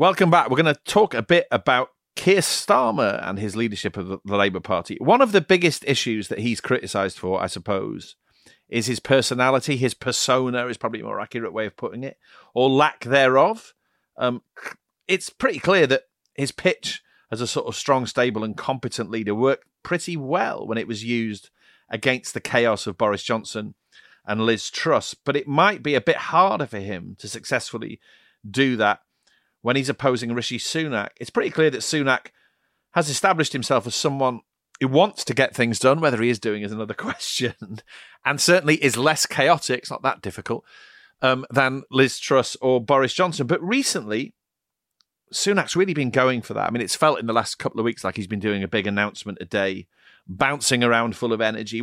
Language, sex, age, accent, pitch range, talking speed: English, male, 40-59, British, 110-145 Hz, 195 wpm